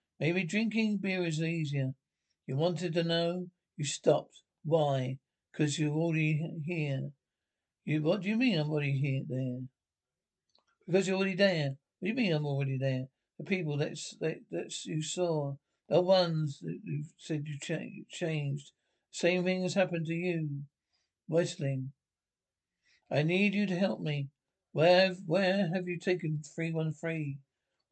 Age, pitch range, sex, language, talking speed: 60-79, 150-180 Hz, male, English, 150 wpm